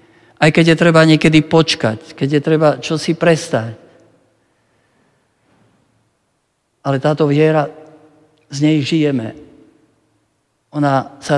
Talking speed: 100 wpm